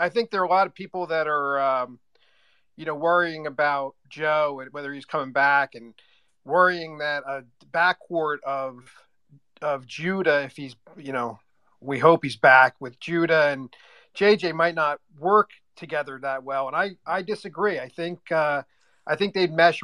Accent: American